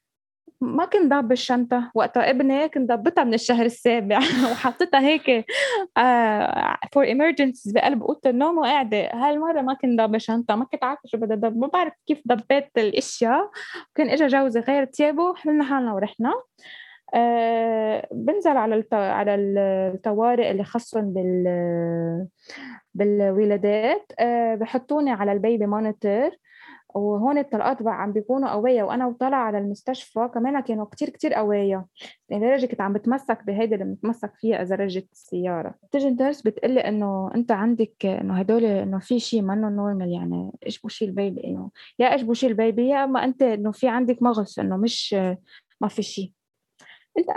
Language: Arabic